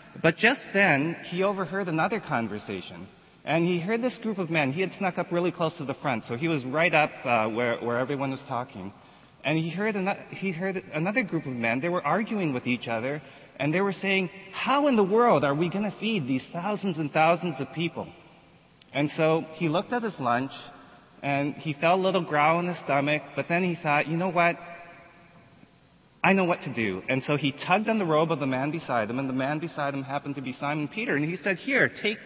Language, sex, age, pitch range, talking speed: English, male, 30-49, 130-180 Hz, 225 wpm